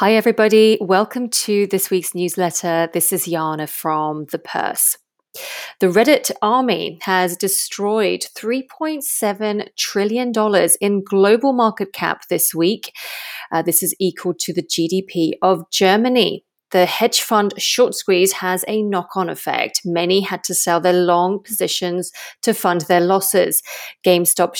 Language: English